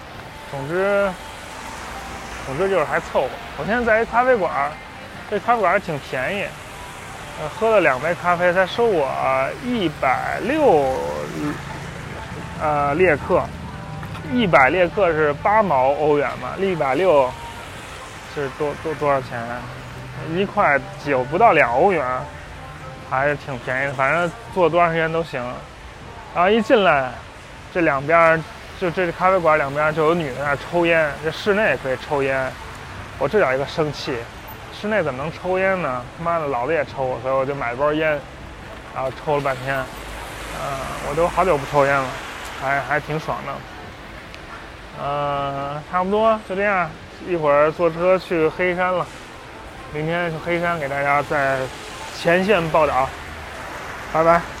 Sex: male